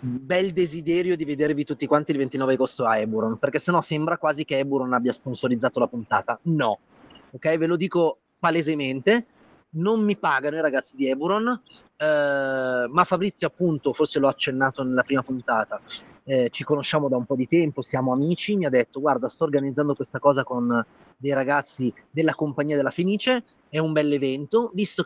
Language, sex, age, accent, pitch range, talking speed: Italian, male, 30-49, native, 135-165 Hz, 180 wpm